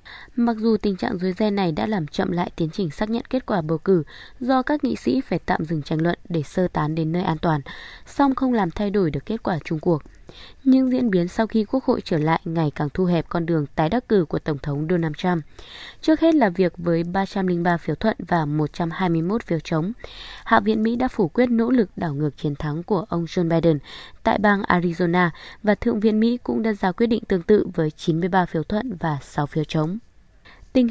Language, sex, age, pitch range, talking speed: Vietnamese, female, 20-39, 165-215 Hz, 230 wpm